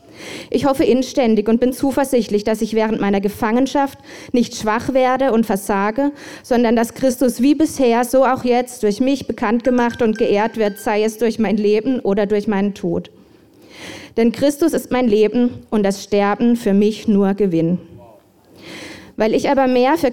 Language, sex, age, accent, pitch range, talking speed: German, female, 20-39, German, 205-250 Hz, 170 wpm